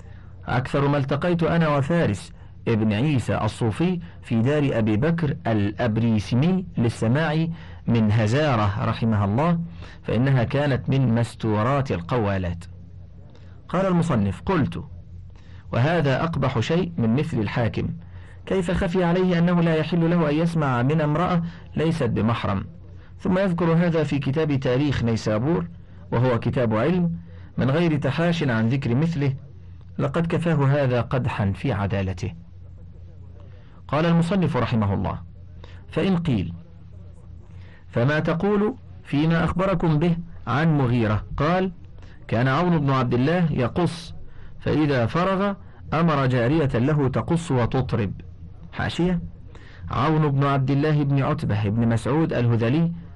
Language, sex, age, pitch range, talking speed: Arabic, male, 50-69, 95-155 Hz, 115 wpm